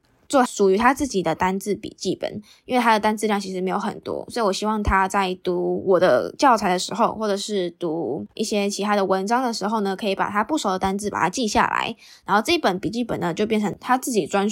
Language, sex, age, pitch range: Chinese, female, 10-29, 195-230 Hz